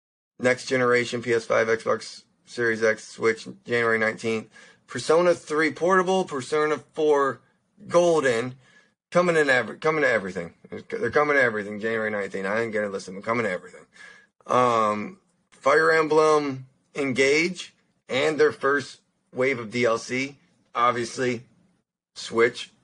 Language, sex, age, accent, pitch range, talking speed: English, male, 20-39, American, 105-135 Hz, 125 wpm